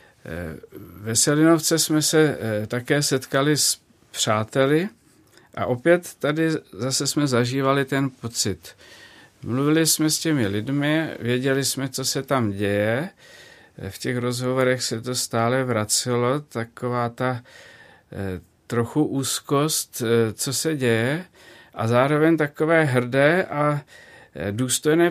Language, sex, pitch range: Czech, male, 115-150 Hz